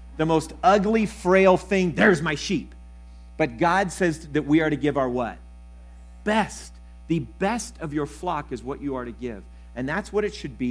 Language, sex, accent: English, male, American